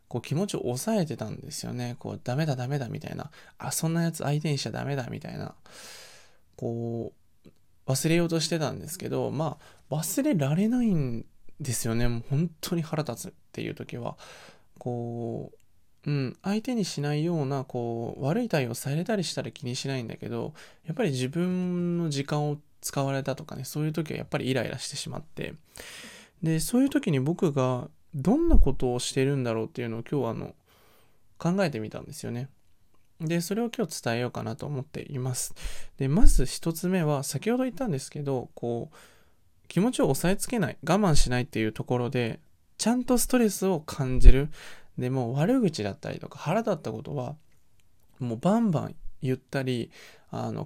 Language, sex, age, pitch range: Japanese, male, 20-39, 125-170 Hz